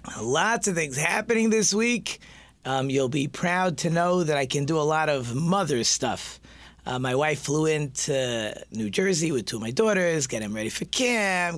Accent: American